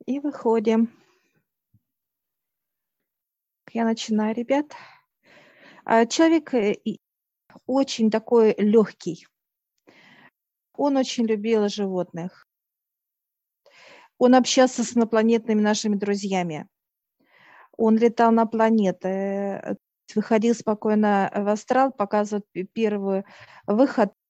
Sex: female